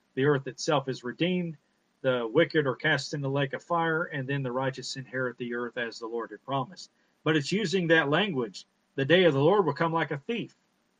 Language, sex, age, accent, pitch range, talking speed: English, male, 40-59, American, 140-175 Hz, 225 wpm